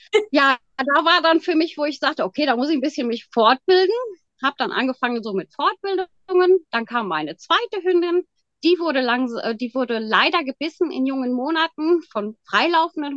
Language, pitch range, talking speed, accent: German, 225-305 Hz, 175 wpm, German